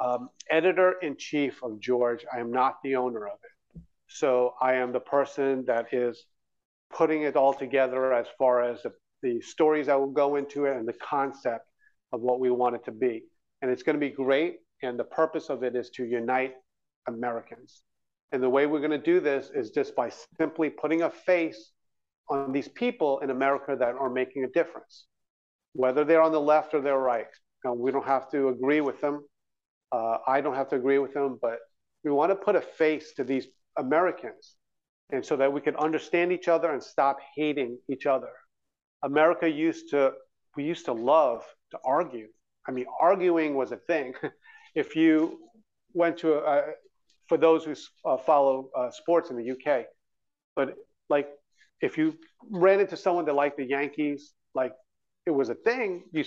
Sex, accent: male, American